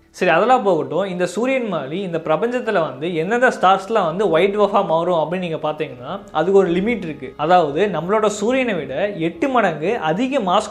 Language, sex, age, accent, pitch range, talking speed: Tamil, male, 20-39, native, 165-230 Hz, 170 wpm